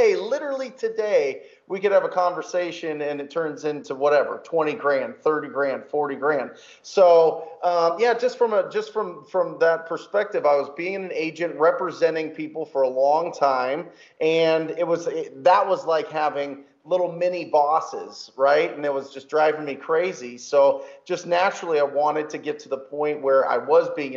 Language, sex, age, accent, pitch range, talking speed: English, male, 30-49, American, 140-175 Hz, 180 wpm